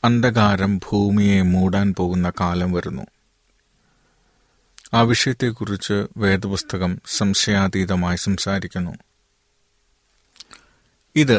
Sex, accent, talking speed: male, native, 60 wpm